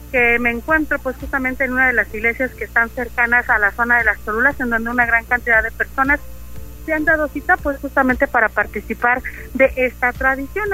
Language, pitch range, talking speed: Spanish, 230-280 Hz, 205 wpm